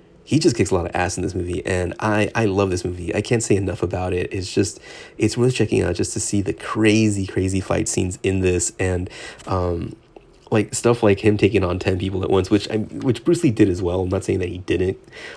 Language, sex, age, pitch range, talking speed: English, male, 30-49, 90-110 Hz, 250 wpm